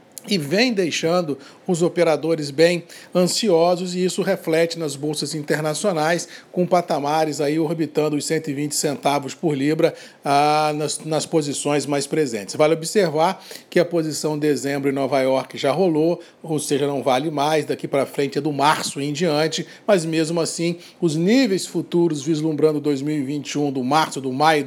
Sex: male